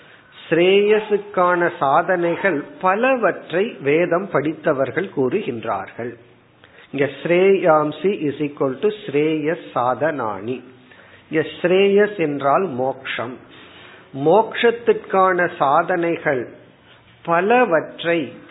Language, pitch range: Tamil, 140-180 Hz